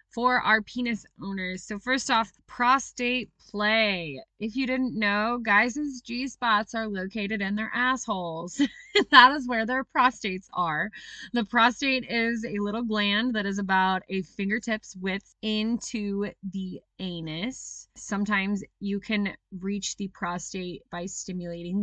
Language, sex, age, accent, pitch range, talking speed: English, female, 20-39, American, 185-230 Hz, 135 wpm